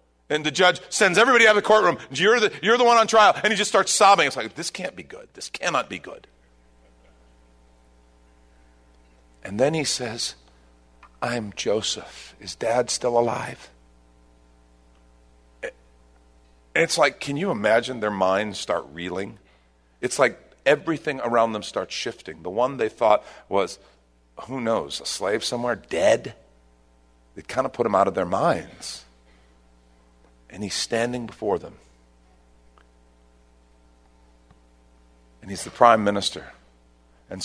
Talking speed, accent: 140 wpm, American